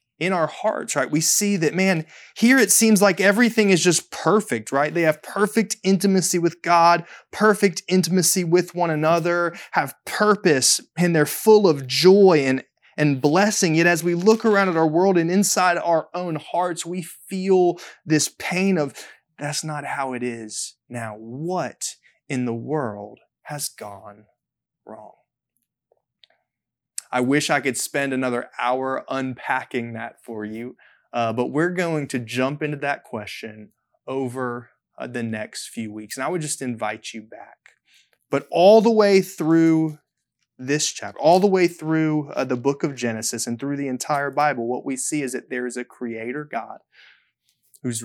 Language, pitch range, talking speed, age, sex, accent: English, 130-180 Hz, 165 wpm, 20-39, male, American